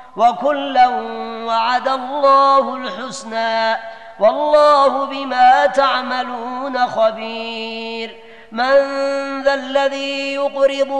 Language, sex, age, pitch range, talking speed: Arabic, female, 30-49, 225-275 Hz, 65 wpm